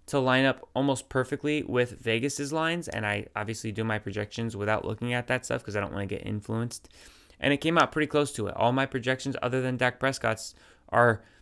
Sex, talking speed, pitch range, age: male, 220 wpm, 105-125 Hz, 20-39